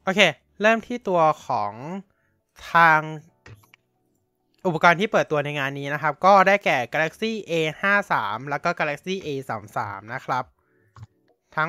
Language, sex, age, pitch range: Thai, male, 20-39, 125-175 Hz